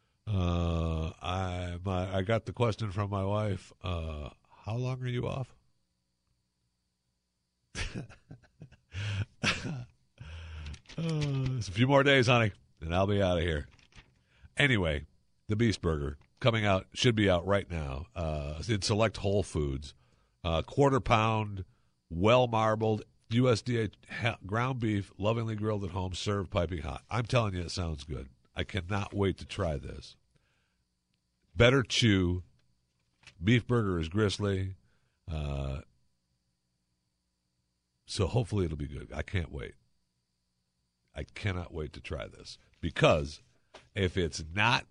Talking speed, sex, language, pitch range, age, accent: 130 wpm, male, English, 75-110 Hz, 60-79, American